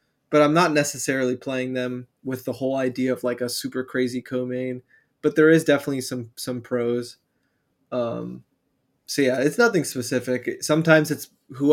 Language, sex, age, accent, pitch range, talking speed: English, male, 20-39, American, 125-145 Hz, 165 wpm